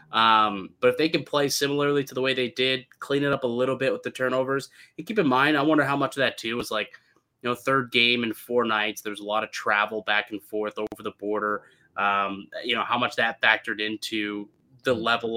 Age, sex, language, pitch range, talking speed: 20-39, male, English, 105-130 Hz, 240 wpm